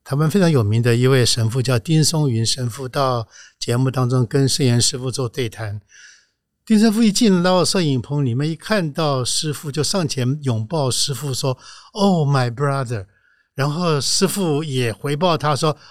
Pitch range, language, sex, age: 130-185 Hz, Chinese, male, 60-79